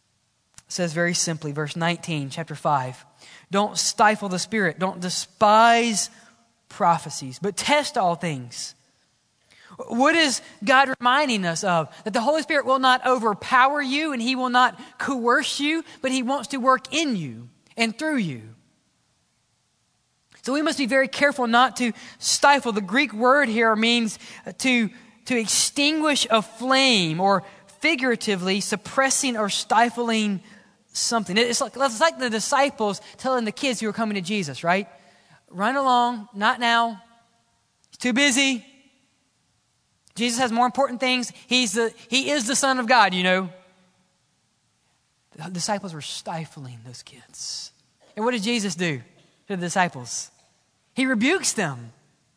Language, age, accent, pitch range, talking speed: English, 20-39, American, 185-260 Hz, 145 wpm